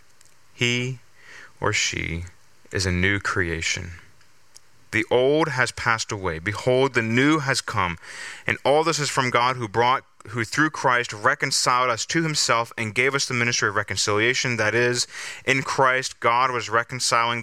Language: English